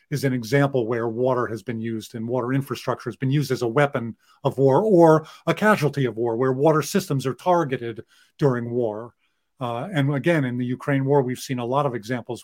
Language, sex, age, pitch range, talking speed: English, male, 40-59, 120-155 Hz, 210 wpm